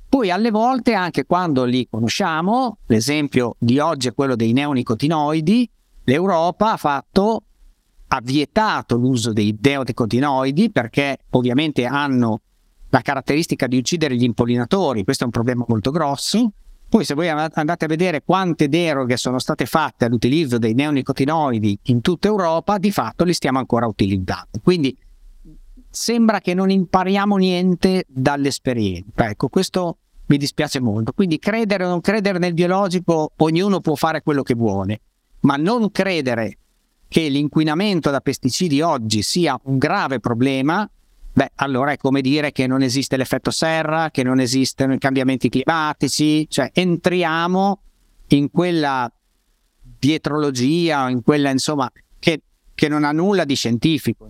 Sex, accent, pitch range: male, native, 130-175 Hz